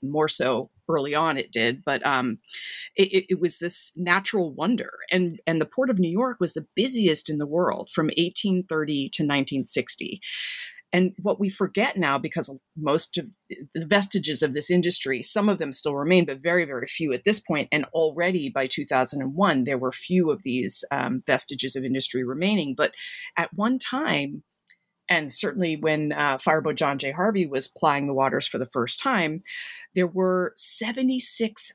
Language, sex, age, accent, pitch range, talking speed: English, female, 40-59, American, 145-195 Hz, 175 wpm